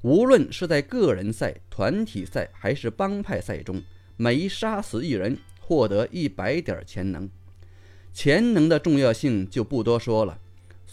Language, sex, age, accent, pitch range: Chinese, male, 30-49, native, 95-145 Hz